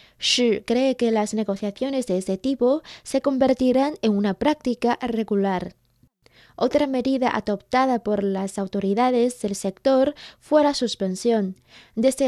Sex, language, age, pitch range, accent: female, Chinese, 20-39, 200-260 Hz, Spanish